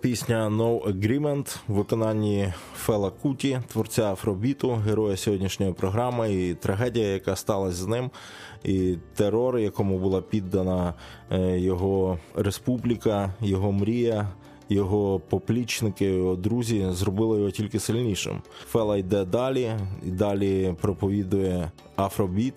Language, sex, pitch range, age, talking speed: Ukrainian, male, 95-110 Hz, 20-39, 110 wpm